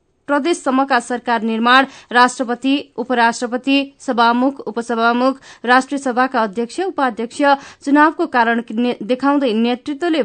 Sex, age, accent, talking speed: female, 20-39, Indian, 100 wpm